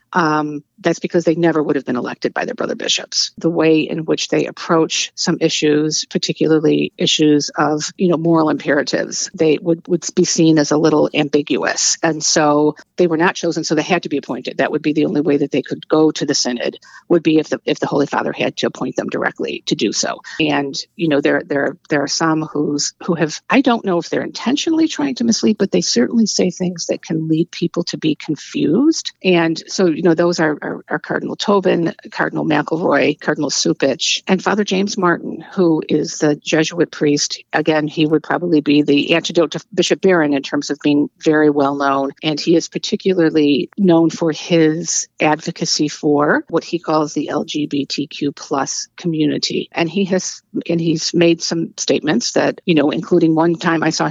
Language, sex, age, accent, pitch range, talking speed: English, female, 50-69, American, 150-175 Hz, 200 wpm